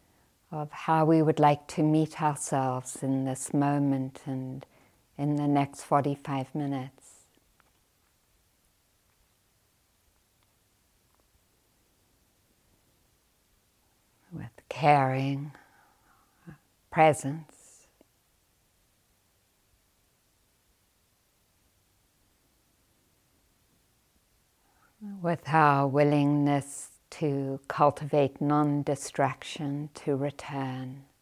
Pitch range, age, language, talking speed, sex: 100-145 Hz, 60-79, English, 55 wpm, female